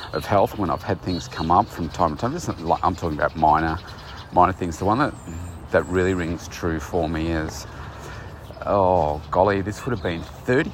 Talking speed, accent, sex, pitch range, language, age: 195 wpm, Australian, male, 85-105 Hz, English, 40-59